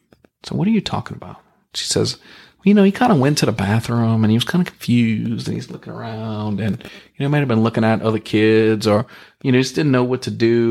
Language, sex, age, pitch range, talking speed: English, male, 40-59, 105-130 Hz, 260 wpm